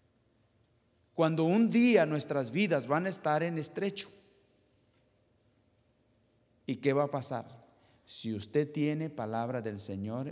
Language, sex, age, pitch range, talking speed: English, male, 40-59, 115-150 Hz, 120 wpm